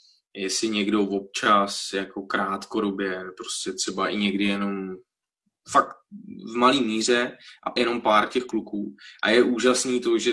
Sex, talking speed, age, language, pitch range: male, 145 wpm, 20-39, Czech, 105-125 Hz